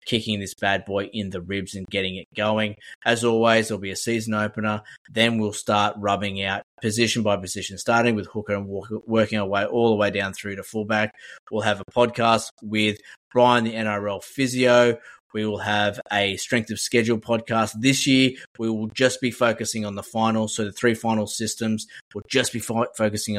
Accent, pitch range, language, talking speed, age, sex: Australian, 100-115 Hz, English, 195 wpm, 20-39, male